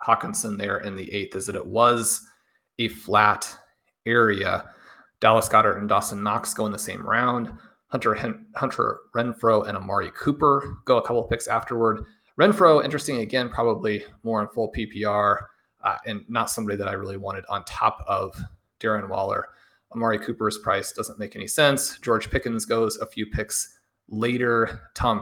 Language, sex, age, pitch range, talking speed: English, male, 30-49, 105-120 Hz, 165 wpm